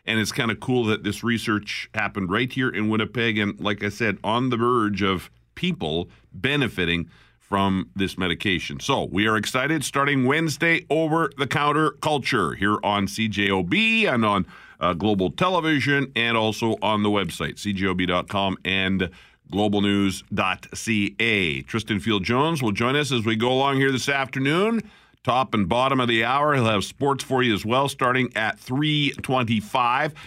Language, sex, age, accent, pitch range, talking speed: English, male, 50-69, American, 100-135 Hz, 155 wpm